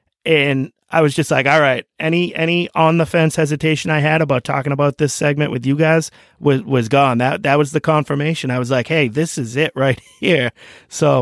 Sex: male